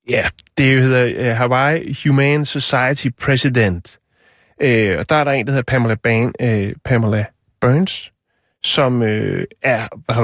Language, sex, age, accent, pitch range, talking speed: Danish, male, 30-49, native, 110-135 Hz, 145 wpm